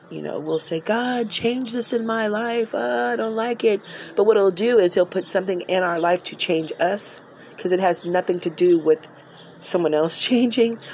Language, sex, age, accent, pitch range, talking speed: English, female, 40-59, American, 155-185 Hz, 220 wpm